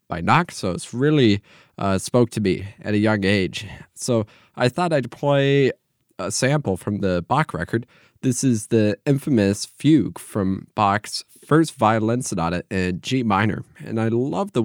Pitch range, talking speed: 100-140 Hz, 160 wpm